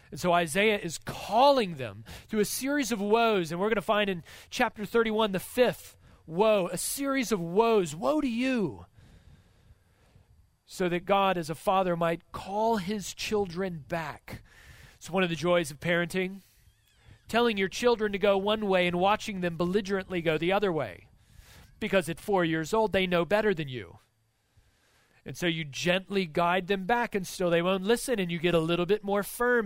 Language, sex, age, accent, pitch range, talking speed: English, male, 40-59, American, 155-210 Hz, 185 wpm